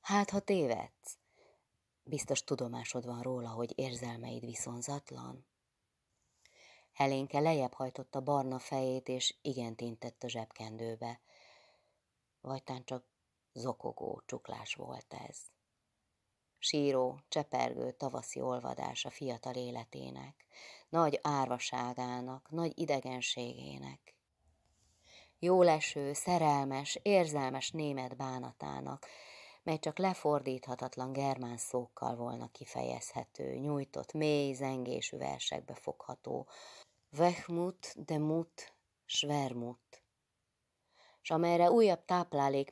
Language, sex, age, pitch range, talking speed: Hungarian, female, 30-49, 120-145 Hz, 90 wpm